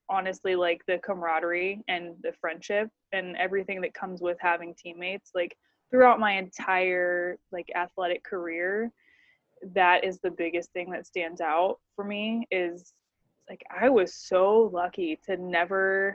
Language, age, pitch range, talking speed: English, 20-39, 175-210 Hz, 145 wpm